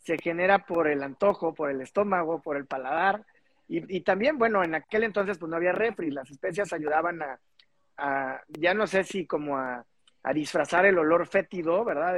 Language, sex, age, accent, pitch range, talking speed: Spanish, male, 40-59, Mexican, 155-205 Hz, 190 wpm